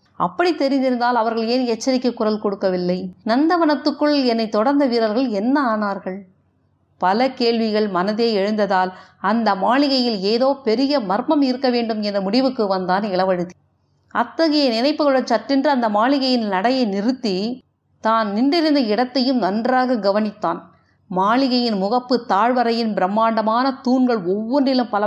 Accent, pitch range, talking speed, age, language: native, 210-260 Hz, 105 wpm, 50-69, Tamil